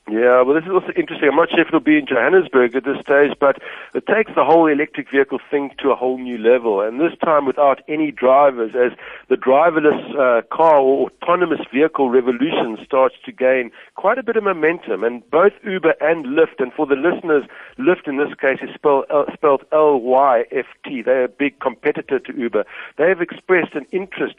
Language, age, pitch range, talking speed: English, 60-79, 130-175 Hz, 195 wpm